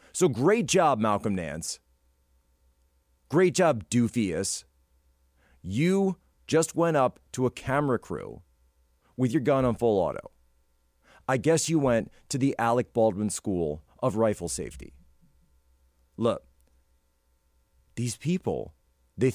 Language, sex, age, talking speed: English, male, 30-49, 120 wpm